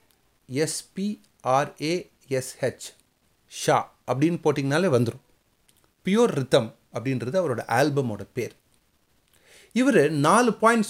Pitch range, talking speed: 125-185 Hz, 75 wpm